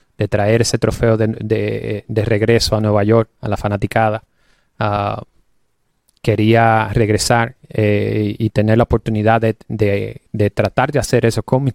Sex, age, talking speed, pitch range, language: male, 30-49, 160 wpm, 105-120 Hz, English